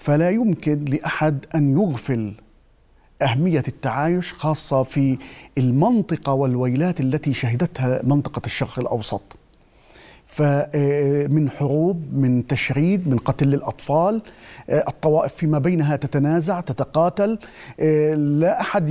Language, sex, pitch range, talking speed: Arabic, male, 140-180 Hz, 95 wpm